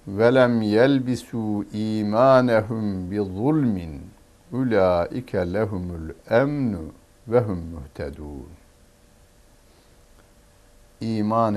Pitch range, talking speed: 85-115 Hz, 55 wpm